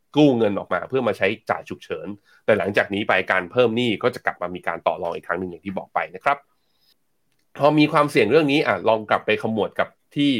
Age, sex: 20-39, male